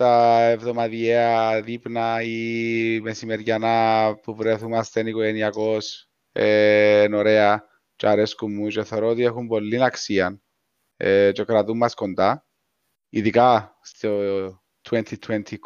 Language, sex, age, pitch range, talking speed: Greek, male, 20-39, 115-150 Hz, 105 wpm